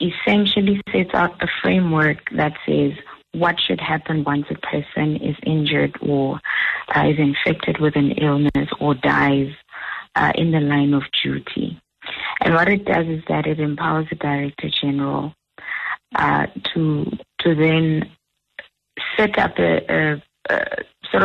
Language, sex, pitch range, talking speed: English, female, 145-165 Hz, 145 wpm